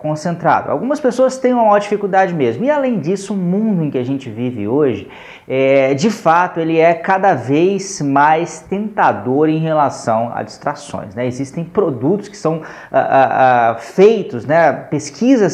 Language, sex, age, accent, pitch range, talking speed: Portuguese, male, 20-39, Brazilian, 145-200 Hz, 150 wpm